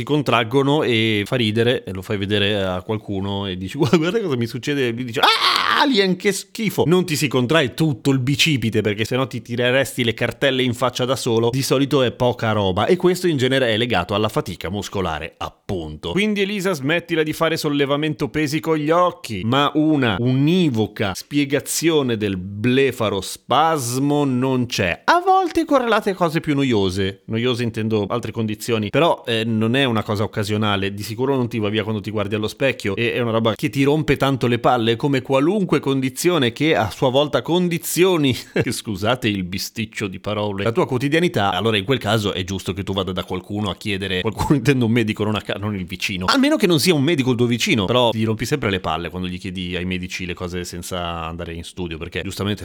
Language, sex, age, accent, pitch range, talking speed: Italian, male, 30-49, native, 100-145 Hz, 200 wpm